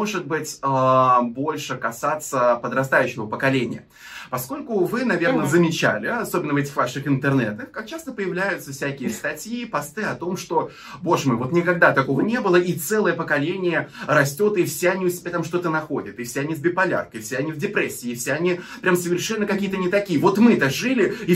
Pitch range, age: 135-190 Hz, 20-39